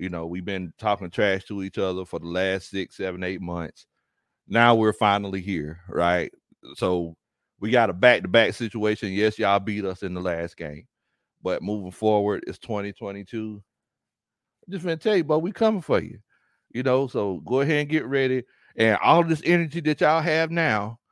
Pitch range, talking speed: 100-150 Hz, 190 wpm